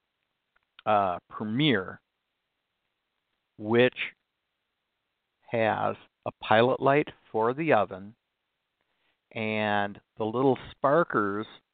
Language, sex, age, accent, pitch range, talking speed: English, male, 50-69, American, 105-125 Hz, 70 wpm